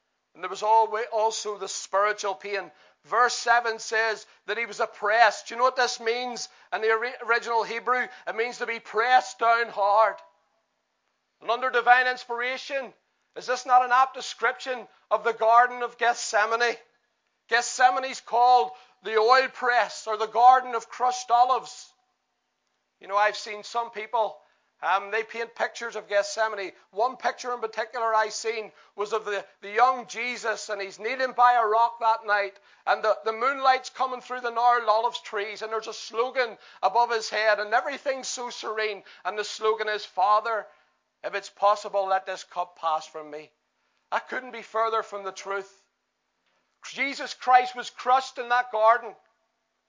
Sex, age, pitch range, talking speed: male, 40-59, 210-245 Hz, 165 wpm